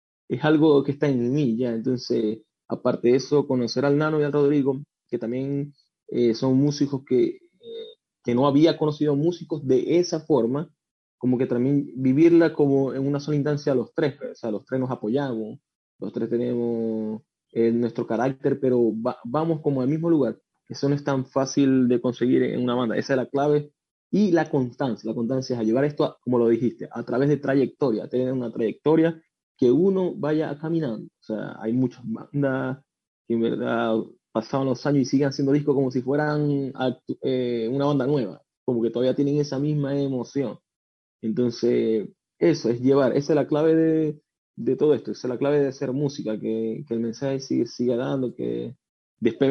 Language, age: English, 20-39